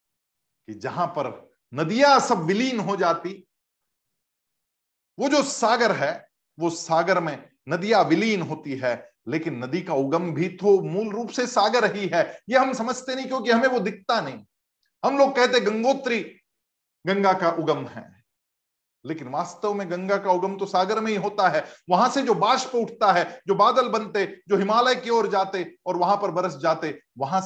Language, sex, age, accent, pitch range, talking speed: Hindi, male, 50-69, native, 130-210 Hz, 175 wpm